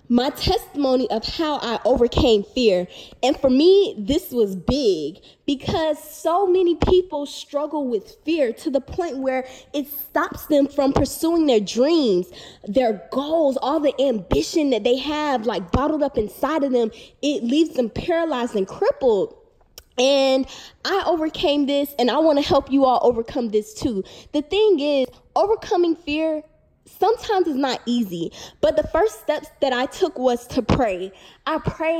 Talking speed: 160 wpm